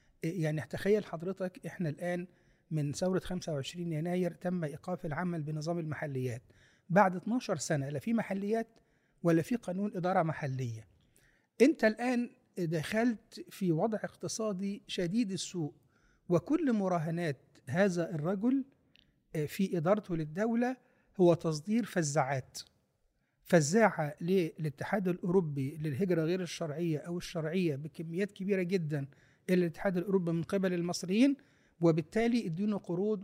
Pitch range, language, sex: 160-195 Hz, Arabic, male